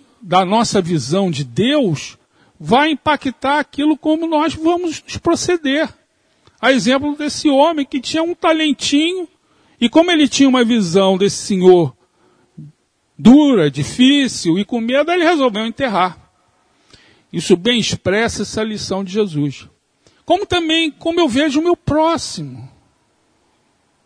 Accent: Brazilian